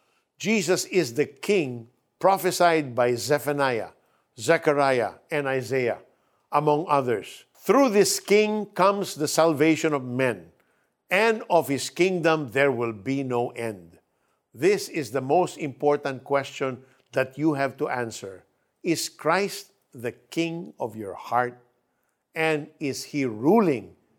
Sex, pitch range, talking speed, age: male, 125-165 Hz, 125 wpm, 50-69